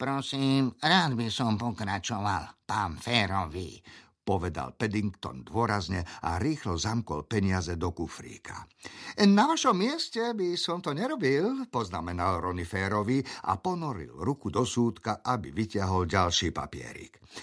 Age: 50-69